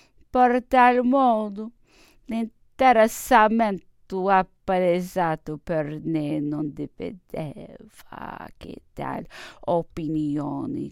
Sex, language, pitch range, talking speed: female, English, 150-250 Hz, 65 wpm